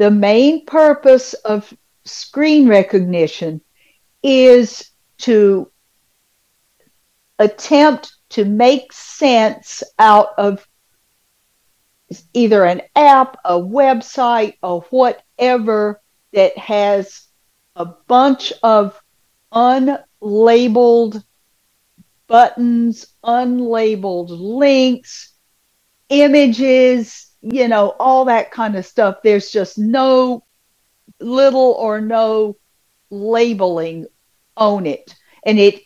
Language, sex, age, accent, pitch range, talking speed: English, female, 50-69, American, 205-260 Hz, 80 wpm